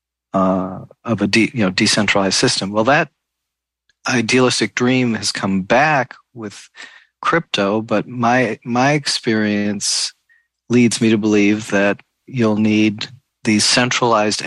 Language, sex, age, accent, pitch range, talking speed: English, male, 40-59, American, 100-120 Hz, 125 wpm